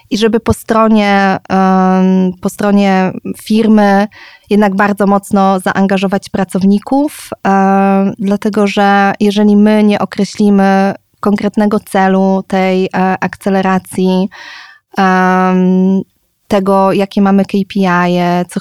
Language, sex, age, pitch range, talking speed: Polish, female, 20-39, 190-210 Hz, 85 wpm